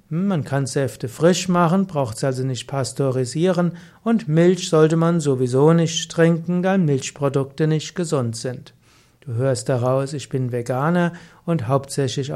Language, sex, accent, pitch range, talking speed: German, male, German, 140-170 Hz, 145 wpm